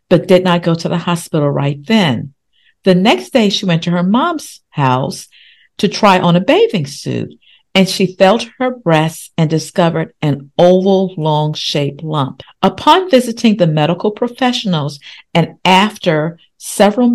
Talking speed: 155 wpm